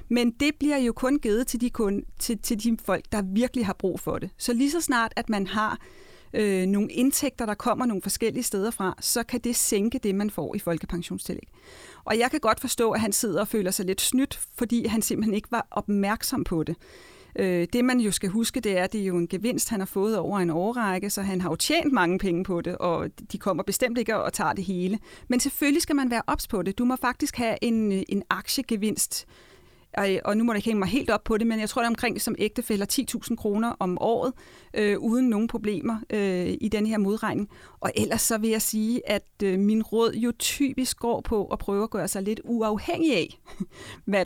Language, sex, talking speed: Danish, female, 235 wpm